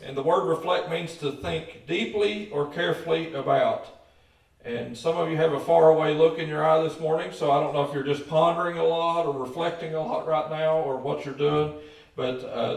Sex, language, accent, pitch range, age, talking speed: male, English, American, 130-160 Hz, 50-69, 215 wpm